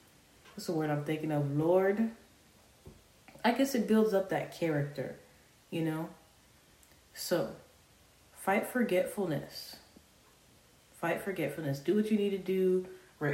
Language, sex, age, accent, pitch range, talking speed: English, female, 30-49, American, 145-185 Hz, 125 wpm